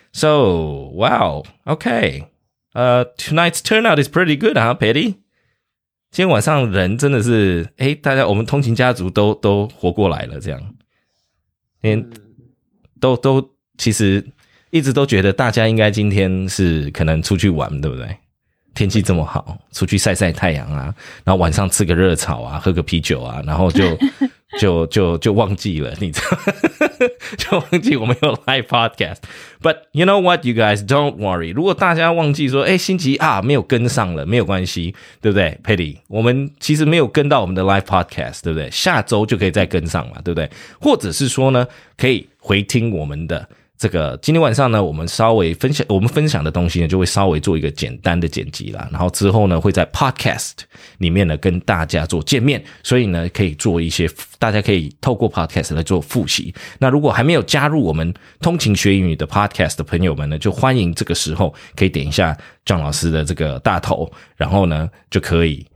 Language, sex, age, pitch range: English, male, 20-39, 85-130 Hz